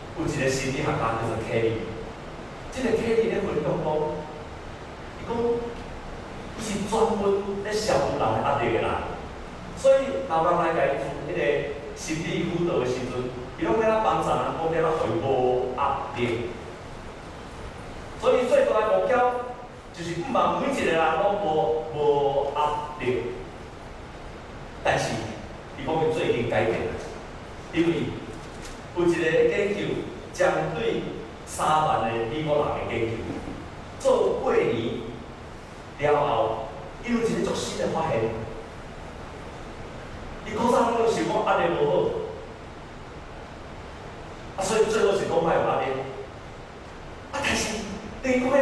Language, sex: Chinese, male